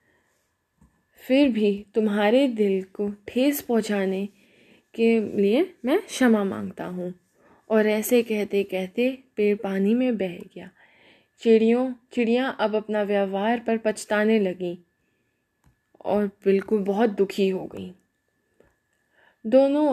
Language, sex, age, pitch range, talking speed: Hindi, female, 10-29, 200-240 Hz, 110 wpm